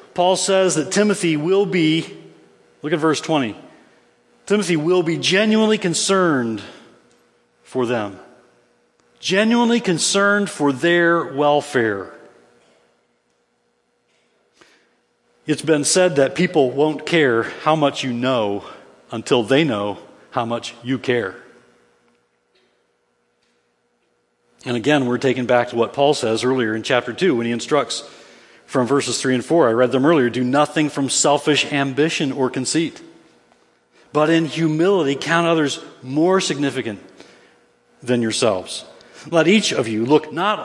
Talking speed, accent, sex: 130 wpm, American, male